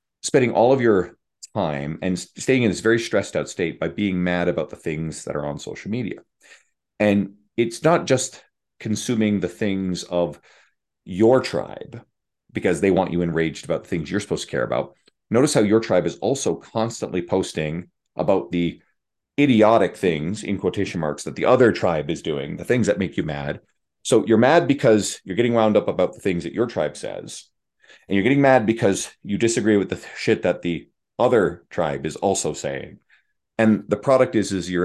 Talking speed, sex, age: 195 wpm, male, 40-59